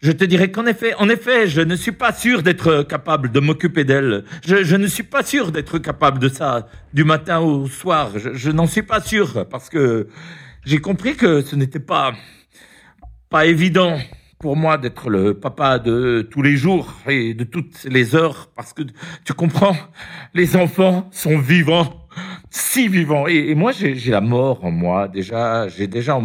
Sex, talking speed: male, 190 wpm